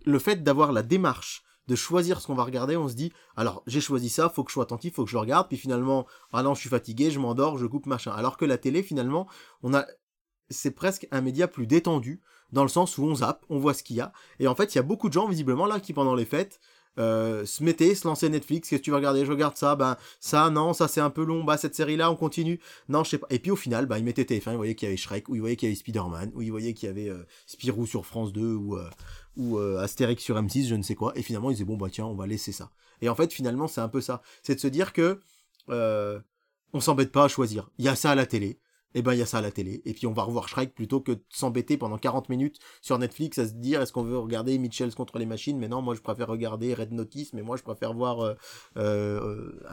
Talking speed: 290 wpm